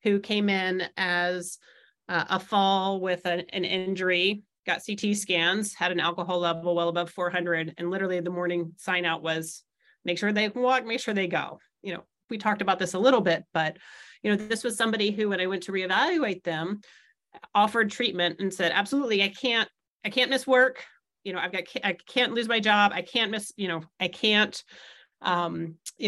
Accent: American